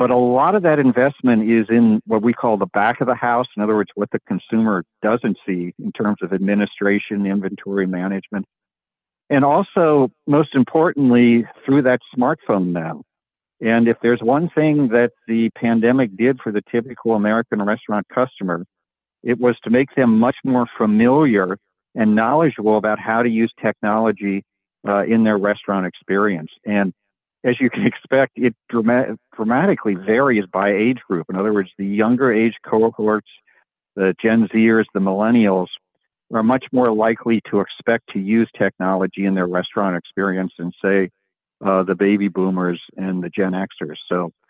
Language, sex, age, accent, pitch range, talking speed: English, male, 50-69, American, 100-120 Hz, 160 wpm